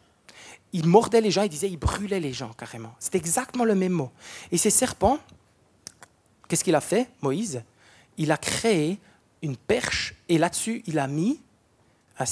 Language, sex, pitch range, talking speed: French, male, 140-195 Hz, 170 wpm